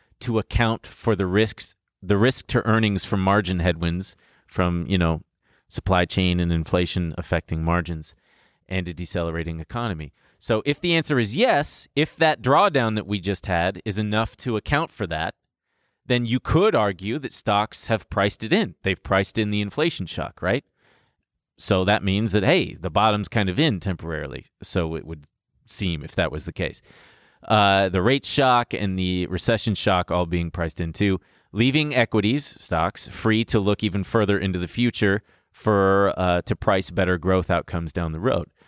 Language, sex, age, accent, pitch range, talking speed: English, male, 30-49, American, 90-120 Hz, 175 wpm